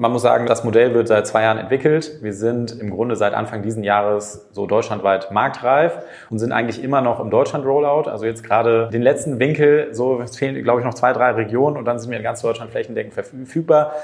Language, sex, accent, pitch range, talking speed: German, male, German, 110-130 Hz, 220 wpm